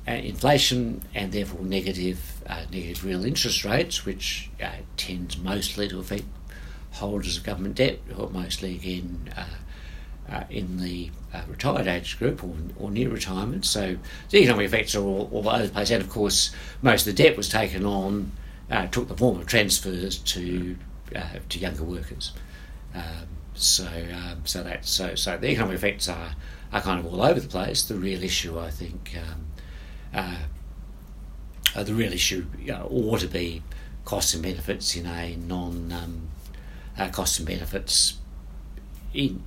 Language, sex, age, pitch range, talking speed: English, male, 60-79, 70-95 Hz, 170 wpm